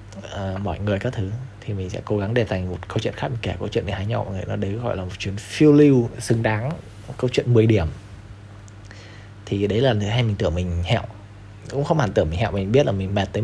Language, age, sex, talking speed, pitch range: Vietnamese, 20-39, male, 270 wpm, 95-110 Hz